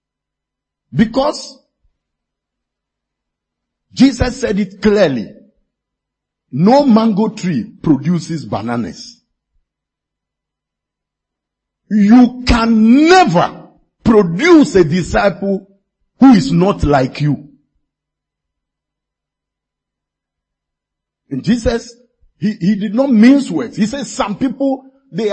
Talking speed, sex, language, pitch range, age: 80 wpm, male, English, 190-265 Hz, 50-69